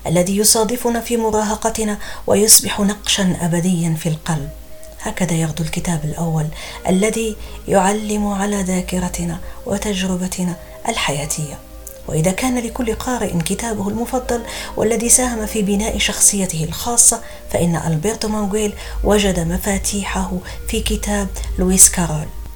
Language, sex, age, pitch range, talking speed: Arabic, female, 40-59, 175-220 Hz, 105 wpm